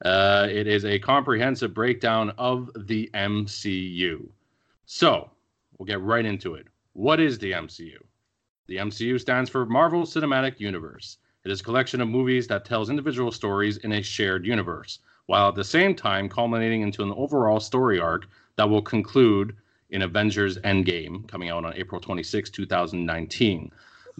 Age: 30-49